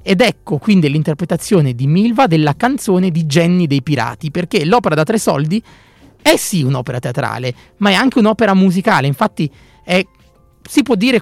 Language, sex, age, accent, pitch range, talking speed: Italian, male, 30-49, native, 140-200 Hz, 165 wpm